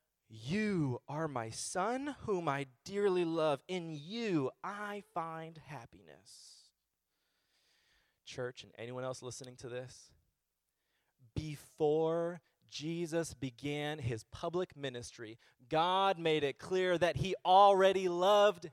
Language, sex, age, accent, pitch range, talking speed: English, male, 30-49, American, 130-195 Hz, 110 wpm